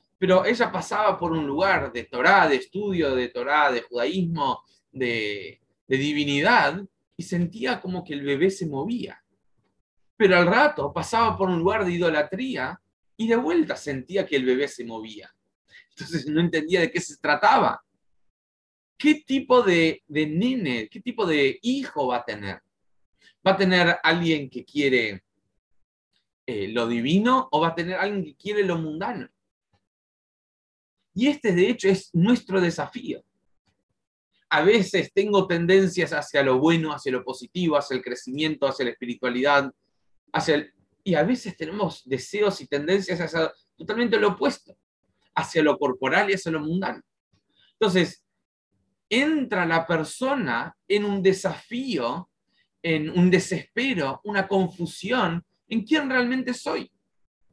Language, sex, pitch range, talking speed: English, male, 150-205 Hz, 145 wpm